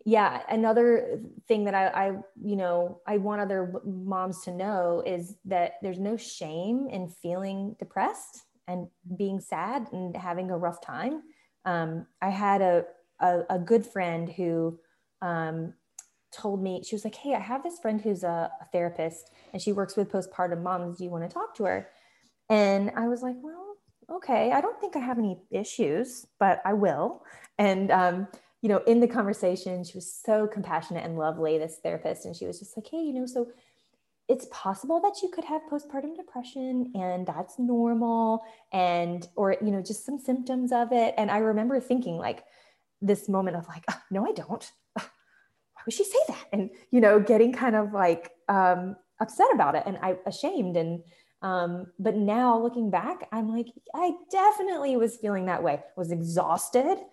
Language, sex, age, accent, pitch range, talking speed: English, female, 20-39, American, 180-240 Hz, 185 wpm